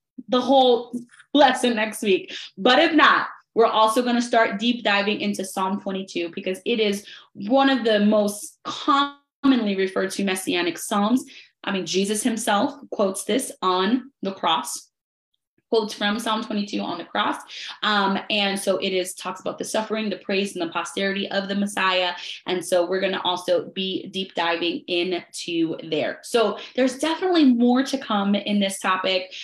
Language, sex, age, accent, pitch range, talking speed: English, female, 20-39, American, 190-250 Hz, 170 wpm